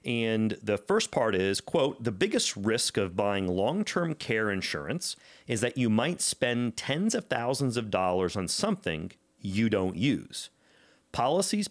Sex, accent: male, American